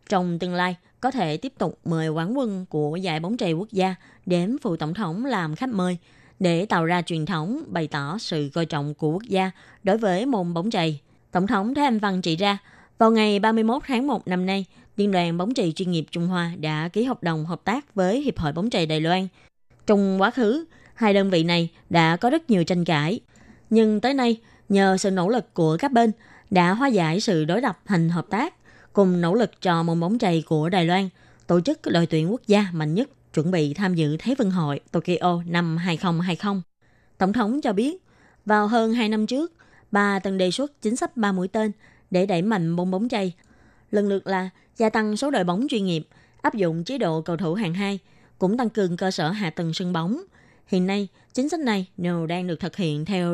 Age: 20-39